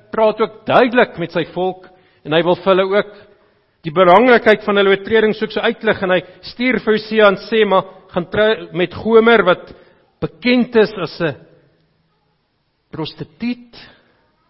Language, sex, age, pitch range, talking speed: English, male, 50-69, 155-205 Hz, 155 wpm